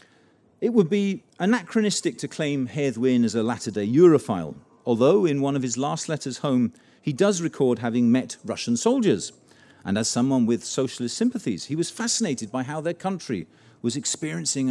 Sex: male